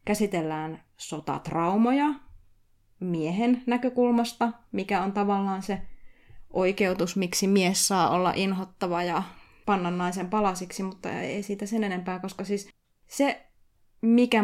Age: 20-39